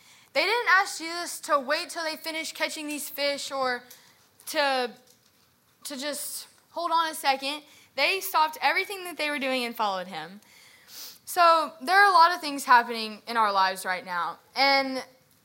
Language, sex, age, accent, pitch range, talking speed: English, female, 10-29, American, 230-290 Hz, 170 wpm